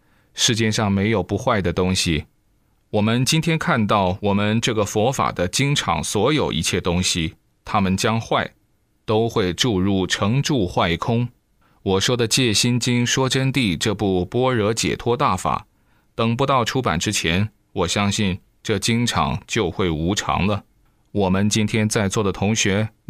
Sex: male